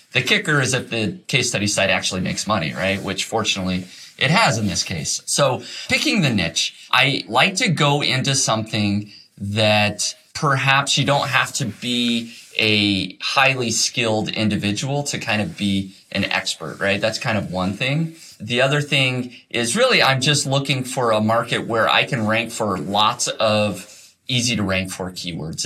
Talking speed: 175 wpm